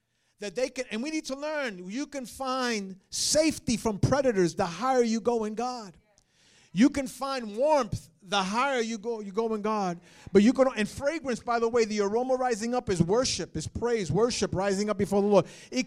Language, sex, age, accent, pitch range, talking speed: English, male, 50-69, American, 205-270 Hz, 210 wpm